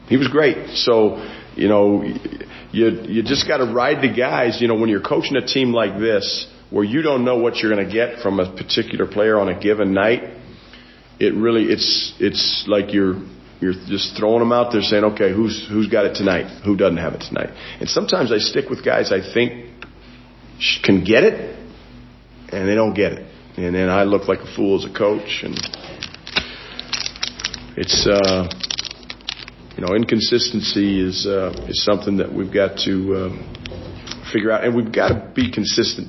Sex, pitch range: male, 100-120 Hz